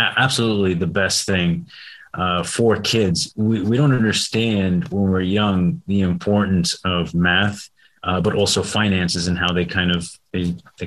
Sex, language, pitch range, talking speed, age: male, English, 90-105 Hz, 155 wpm, 30-49